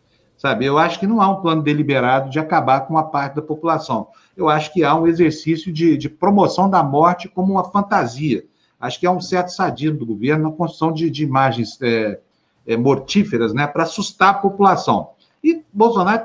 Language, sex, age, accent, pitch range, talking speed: Portuguese, male, 60-79, Brazilian, 135-170 Hz, 200 wpm